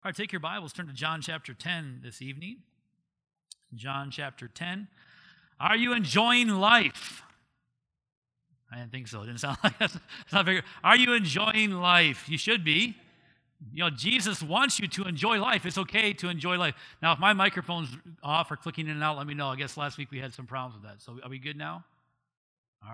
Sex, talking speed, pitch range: male, 200 wpm, 150-195 Hz